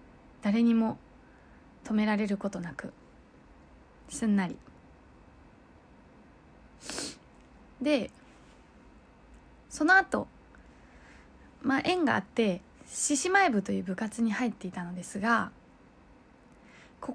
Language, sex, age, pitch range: Japanese, female, 20-39, 205-275 Hz